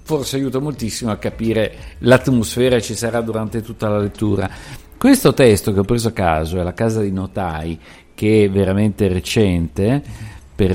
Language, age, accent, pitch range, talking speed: Italian, 50-69, native, 95-130 Hz, 165 wpm